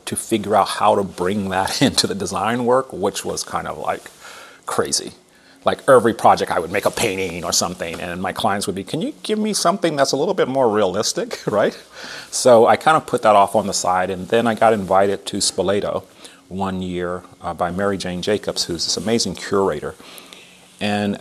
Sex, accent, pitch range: male, American, 90-110 Hz